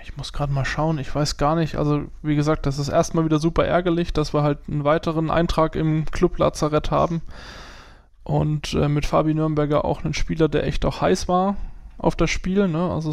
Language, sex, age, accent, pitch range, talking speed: German, male, 20-39, German, 145-165 Hz, 205 wpm